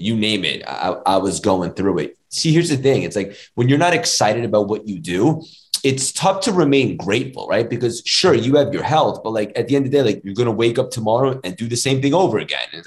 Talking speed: 270 wpm